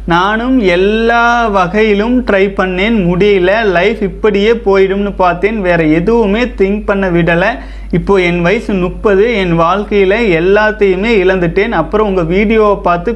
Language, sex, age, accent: Tamil, male, 30-49, native